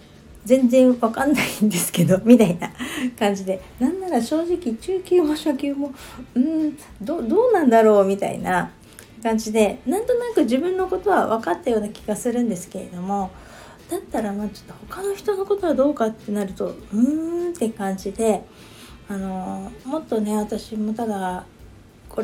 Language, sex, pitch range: Japanese, female, 185-245 Hz